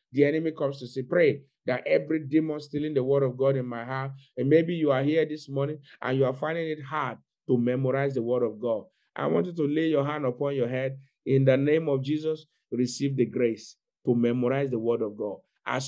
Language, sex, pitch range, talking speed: English, male, 130-150 Hz, 230 wpm